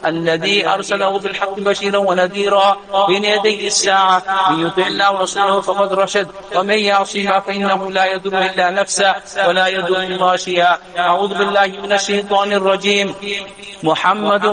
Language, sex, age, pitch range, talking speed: English, male, 50-69, 195-205 Hz, 115 wpm